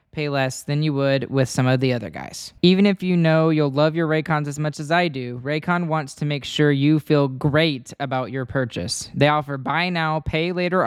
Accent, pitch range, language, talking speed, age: American, 135-165 Hz, English, 225 wpm, 10-29